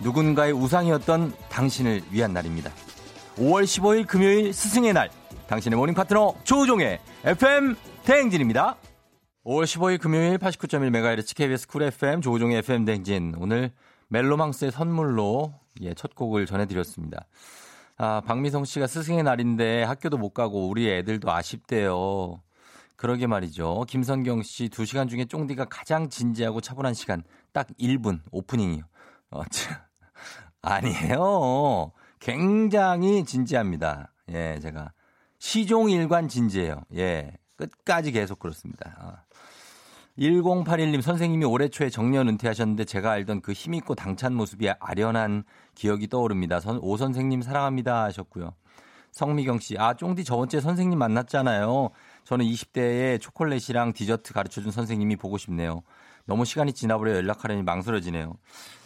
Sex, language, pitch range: male, Korean, 105-150 Hz